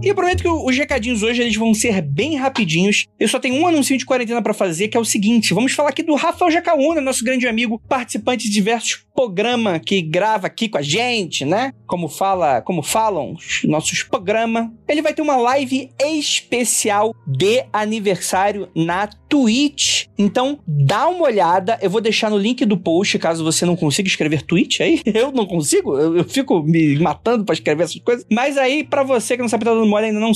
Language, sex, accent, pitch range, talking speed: Portuguese, male, Brazilian, 185-260 Hz, 205 wpm